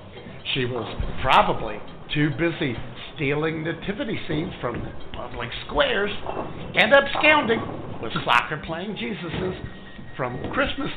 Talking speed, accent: 105 wpm, American